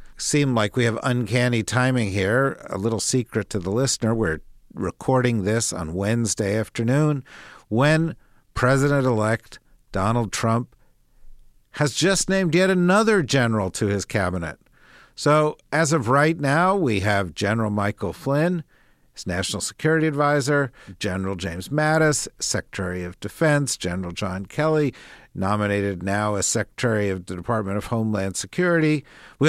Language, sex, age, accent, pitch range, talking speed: English, male, 50-69, American, 105-145 Hz, 130 wpm